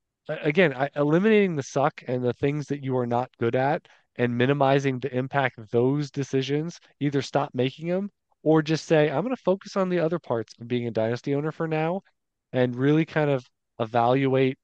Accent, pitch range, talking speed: American, 120-155 Hz, 195 wpm